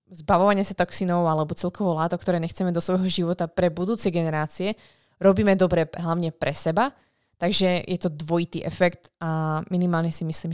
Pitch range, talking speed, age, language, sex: 160-195 Hz, 160 wpm, 20-39, Slovak, female